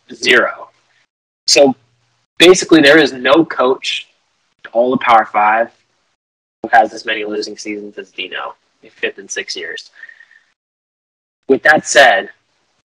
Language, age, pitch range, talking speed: English, 20-39, 110-160 Hz, 125 wpm